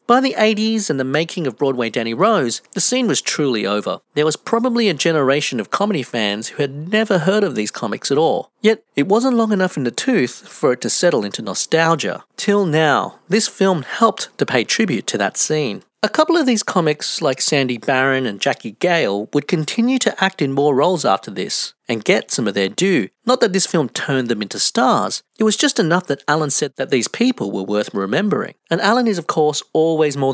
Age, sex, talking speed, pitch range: 40-59, male, 220 wpm, 125-205 Hz